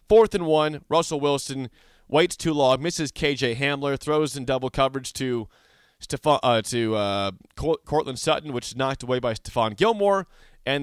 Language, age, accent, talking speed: English, 30-49, American, 160 wpm